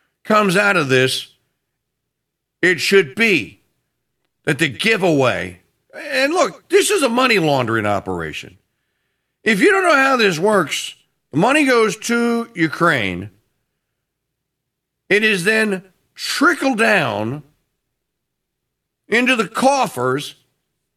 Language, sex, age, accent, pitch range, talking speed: English, male, 50-69, American, 140-230 Hz, 105 wpm